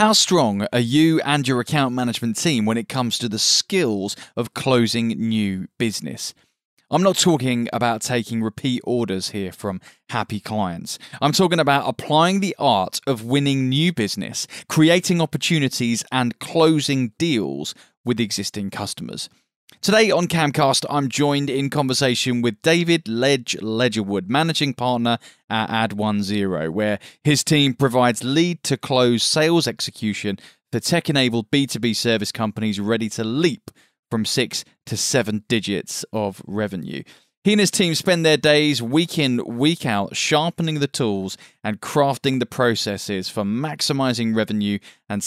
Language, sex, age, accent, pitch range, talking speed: English, male, 20-39, British, 110-150 Hz, 140 wpm